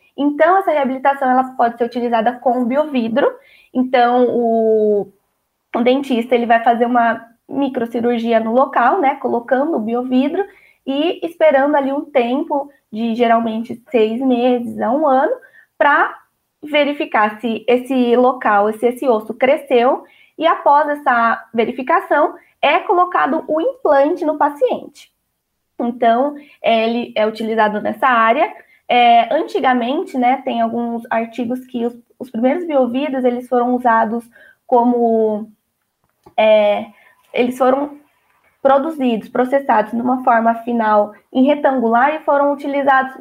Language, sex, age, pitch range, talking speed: Portuguese, female, 20-39, 235-290 Hz, 125 wpm